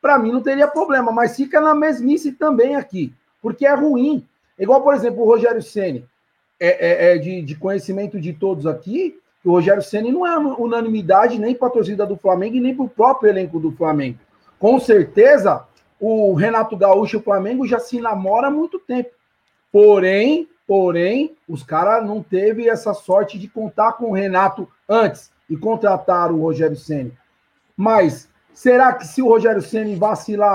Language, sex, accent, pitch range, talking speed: Portuguese, male, Brazilian, 190-255 Hz, 175 wpm